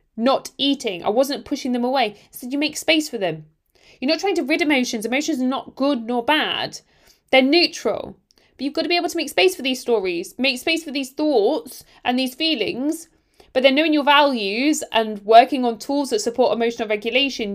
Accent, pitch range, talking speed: British, 215-280 Hz, 210 wpm